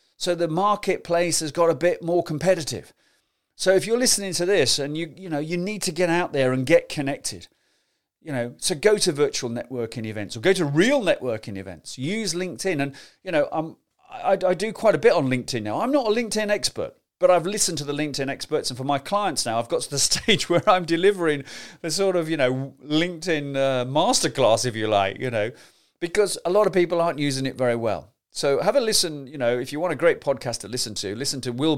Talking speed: 230 wpm